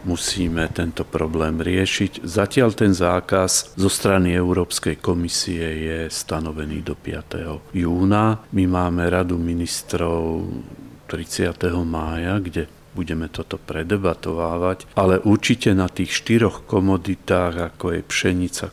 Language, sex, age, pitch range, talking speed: Slovak, male, 40-59, 85-95 Hz, 110 wpm